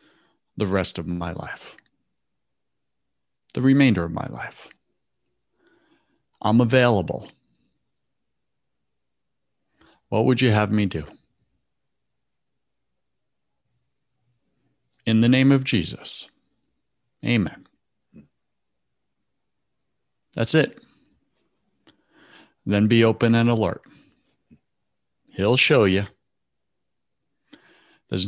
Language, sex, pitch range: English, male, 95-120 Hz